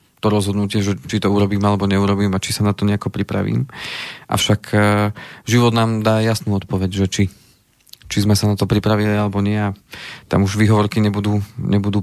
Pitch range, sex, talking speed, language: 100-115 Hz, male, 185 wpm, Slovak